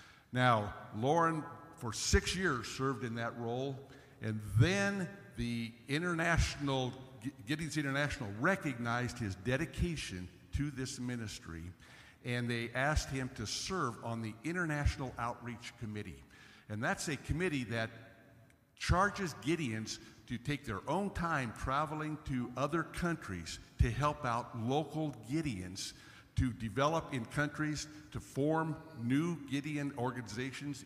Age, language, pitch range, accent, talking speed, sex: 50-69, English, 115-145 Hz, American, 120 wpm, male